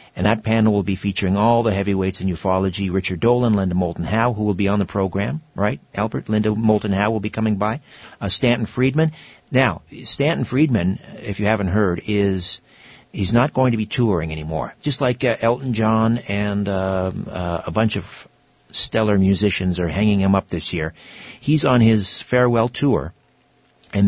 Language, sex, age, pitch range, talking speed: English, male, 60-79, 95-110 Hz, 185 wpm